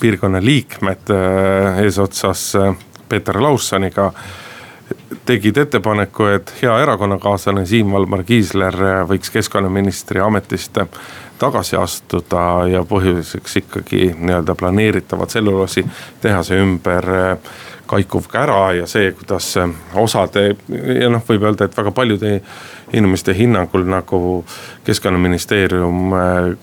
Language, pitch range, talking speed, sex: Finnish, 90-110 Hz, 90 wpm, male